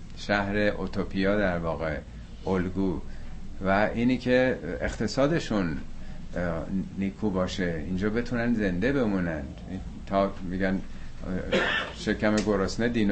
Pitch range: 90-115 Hz